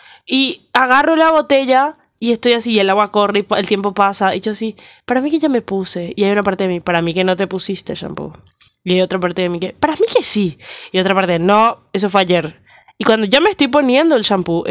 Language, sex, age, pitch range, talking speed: Spanish, female, 10-29, 180-245 Hz, 255 wpm